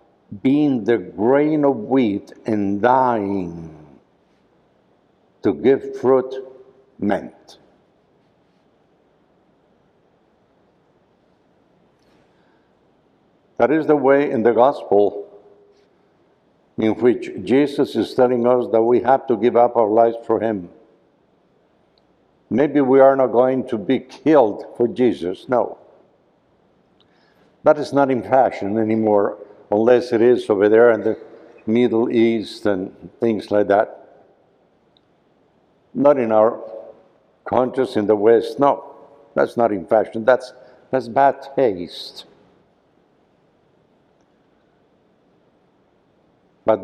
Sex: male